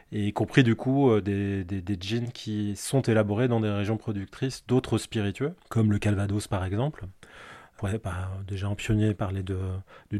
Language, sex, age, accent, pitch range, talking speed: French, male, 20-39, French, 100-115 Hz, 175 wpm